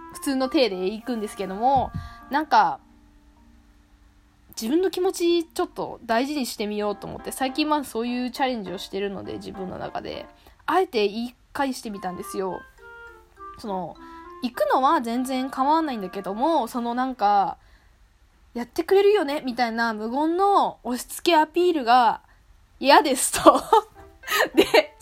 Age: 20-39